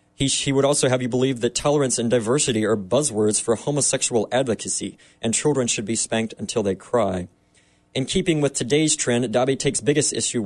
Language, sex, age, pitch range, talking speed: English, male, 20-39, 110-135 Hz, 190 wpm